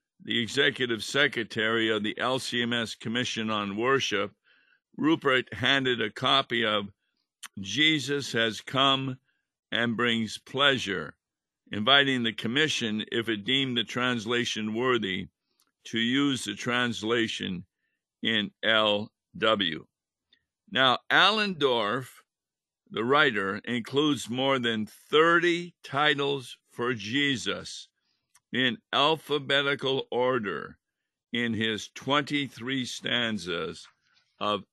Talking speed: 95 wpm